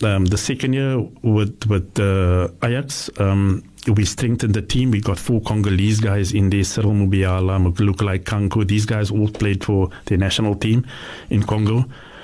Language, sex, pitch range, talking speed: English, male, 100-115 Hz, 165 wpm